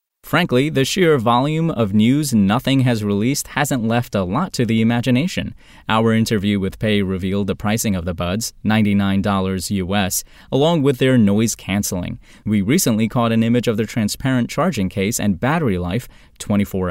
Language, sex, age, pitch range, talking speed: English, male, 20-39, 100-130 Hz, 165 wpm